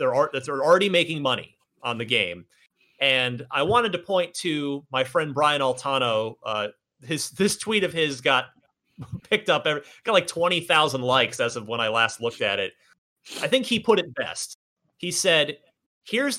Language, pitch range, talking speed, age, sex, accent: English, 125-180 Hz, 185 wpm, 30-49, male, American